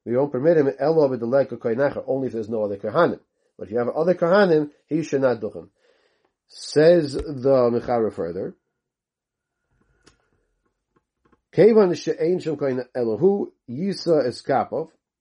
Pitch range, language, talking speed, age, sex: 115-155 Hz, English, 115 wpm, 40-59, male